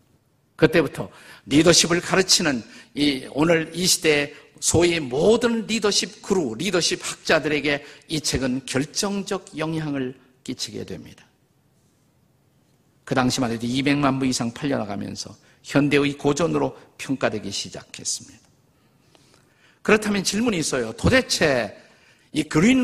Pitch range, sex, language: 125-160 Hz, male, Korean